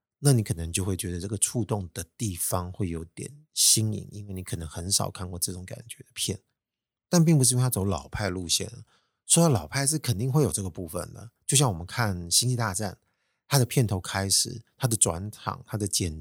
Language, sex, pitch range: Chinese, male, 90-120 Hz